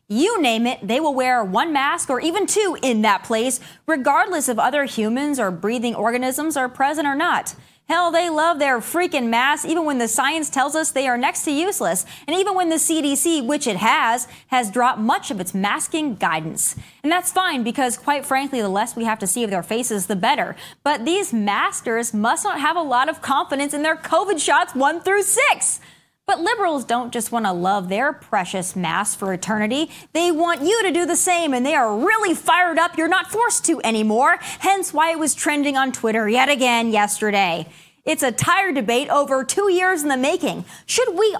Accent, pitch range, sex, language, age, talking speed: American, 240-335 Hz, female, English, 20-39, 205 wpm